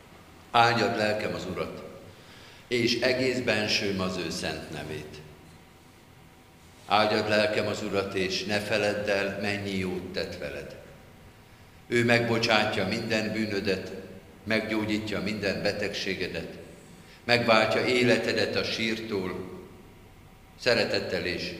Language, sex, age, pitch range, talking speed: Hungarian, male, 50-69, 85-110 Hz, 100 wpm